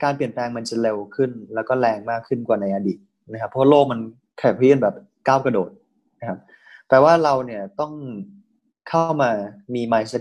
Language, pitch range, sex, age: Thai, 115-140 Hz, male, 20-39